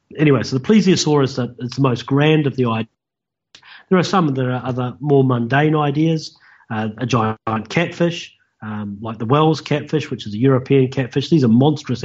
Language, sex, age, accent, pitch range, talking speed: English, male, 40-59, Australian, 115-145 Hz, 185 wpm